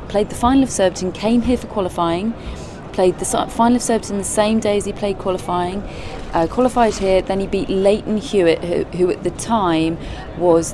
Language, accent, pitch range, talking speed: English, British, 160-195 Hz, 195 wpm